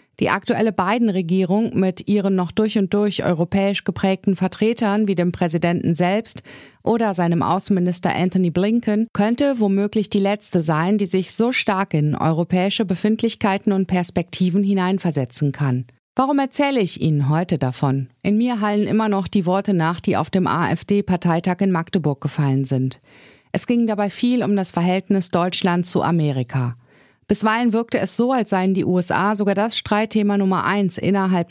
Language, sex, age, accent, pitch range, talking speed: German, female, 30-49, German, 170-210 Hz, 160 wpm